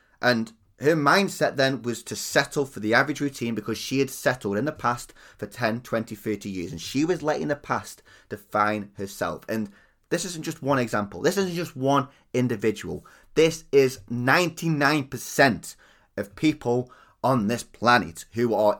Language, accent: English, British